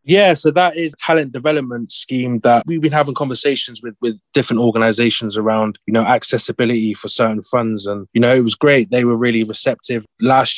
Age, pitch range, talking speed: 20-39, 115-135 Hz, 200 wpm